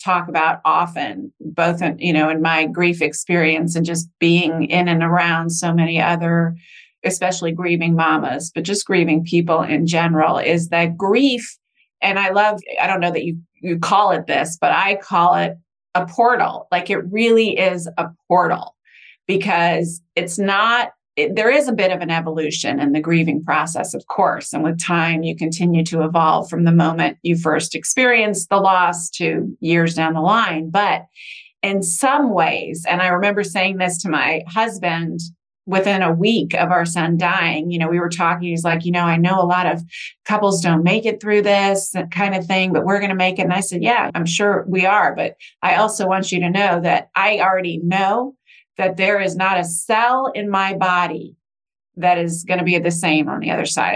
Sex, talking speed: female, 200 wpm